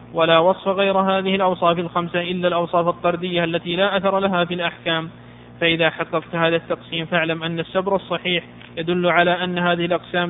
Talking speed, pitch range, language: 165 wpm, 165-180 Hz, Arabic